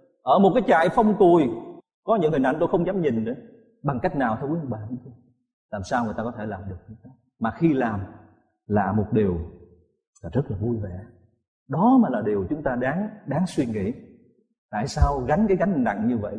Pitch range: 110-175 Hz